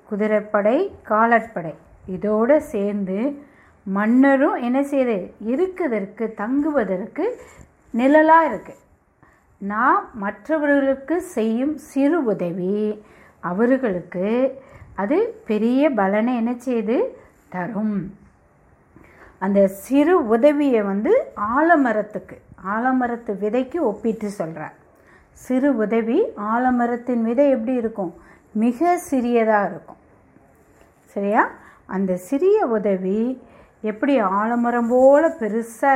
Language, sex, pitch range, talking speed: Tamil, female, 205-275 Hz, 80 wpm